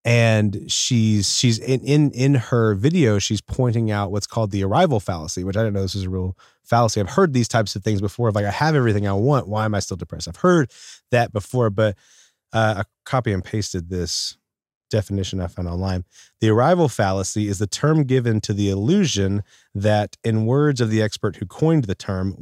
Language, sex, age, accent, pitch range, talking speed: English, male, 30-49, American, 100-120 Hz, 210 wpm